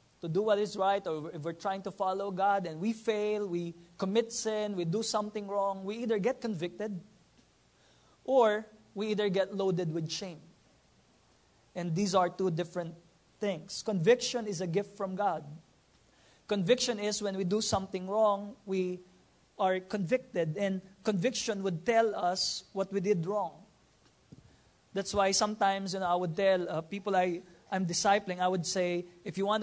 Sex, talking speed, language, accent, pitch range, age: male, 170 wpm, English, Filipino, 180-215 Hz, 20-39